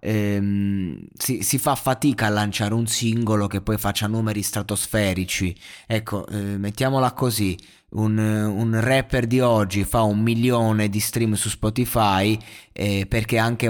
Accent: native